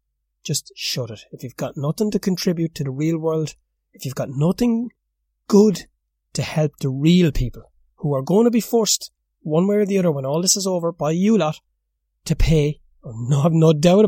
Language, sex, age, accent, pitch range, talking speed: English, male, 30-49, Irish, 130-160 Hz, 205 wpm